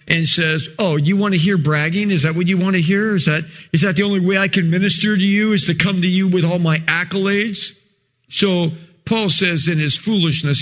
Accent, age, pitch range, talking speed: American, 50-69, 165-220 Hz, 235 wpm